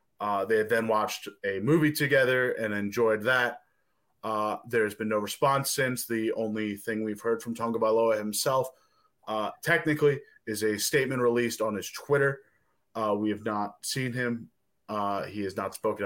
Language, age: English, 20-39